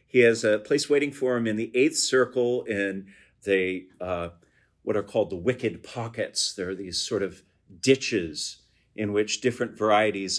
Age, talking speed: 50-69, 175 wpm